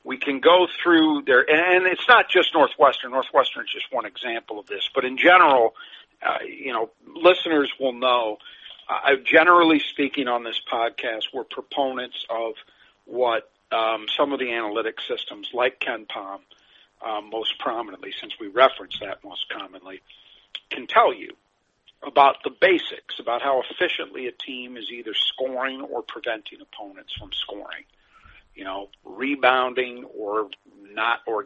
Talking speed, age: 150 wpm, 50-69